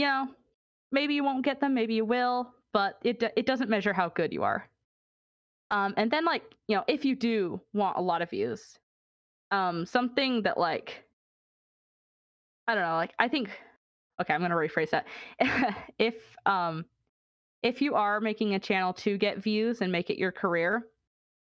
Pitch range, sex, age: 185-255 Hz, female, 20-39